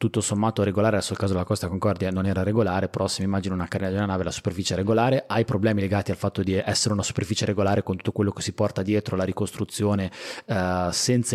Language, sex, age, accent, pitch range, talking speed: Italian, male, 30-49, native, 95-115 Hz, 245 wpm